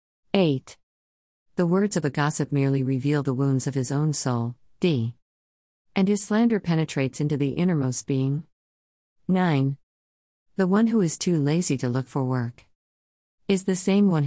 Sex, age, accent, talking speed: female, 50-69, American, 160 wpm